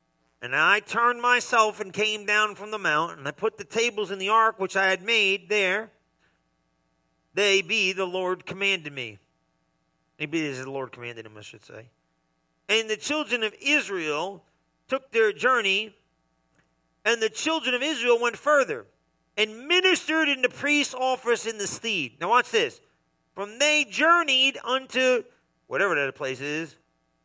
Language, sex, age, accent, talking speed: English, male, 40-59, American, 165 wpm